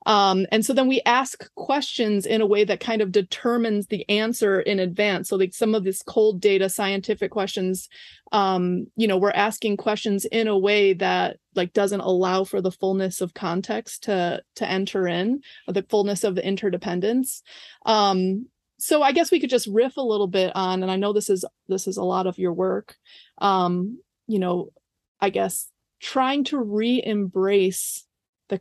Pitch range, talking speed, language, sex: 190-230 Hz, 180 wpm, English, female